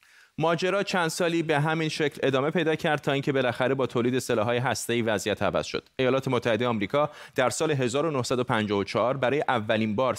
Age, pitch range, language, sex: 30-49, 110-145 Hz, Persian, male